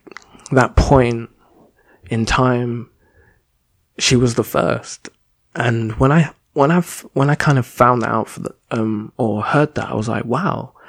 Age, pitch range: 20-39, 110-125 Hz